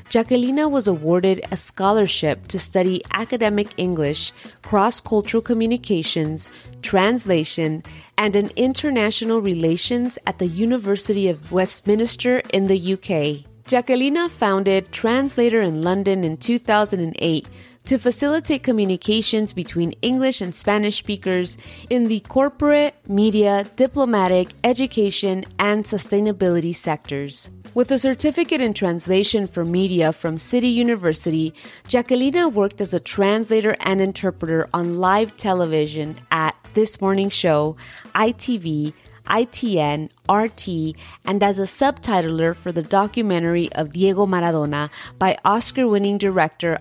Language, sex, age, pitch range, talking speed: English, female, 30-49, 170-225 Hz, 115 wpm